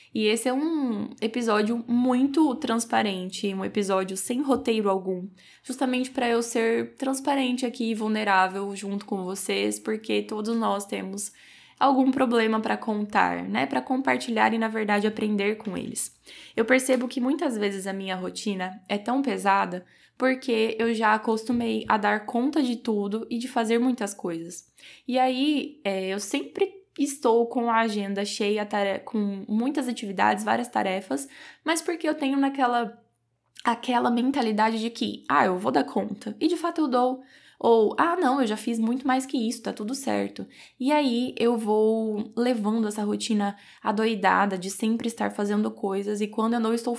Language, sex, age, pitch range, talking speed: Portuguese, female, 10-29, 205-255 Hz, 165 wpm